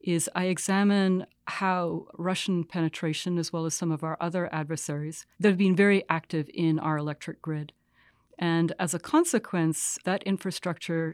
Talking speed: 155 wpm